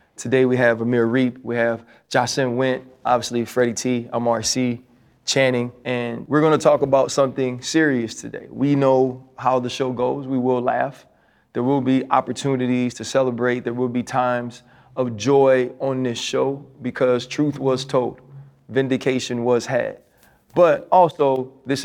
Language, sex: English, male